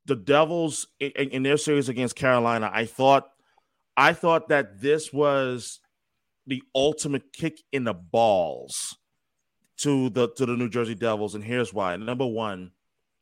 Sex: male